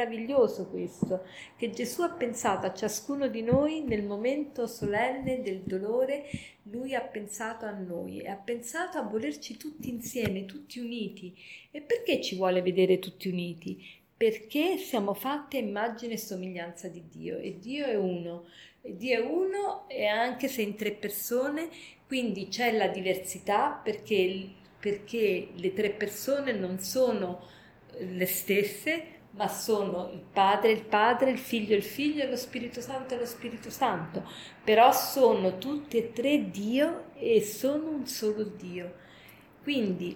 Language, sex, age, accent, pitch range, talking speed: Italian, female, 40-59, native, 195-260 Hz, 150 wpm